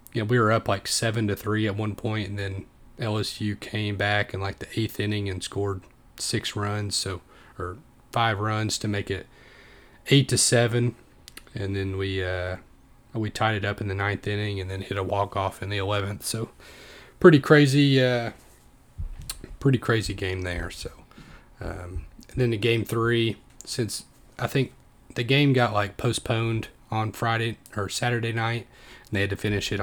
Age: 30-49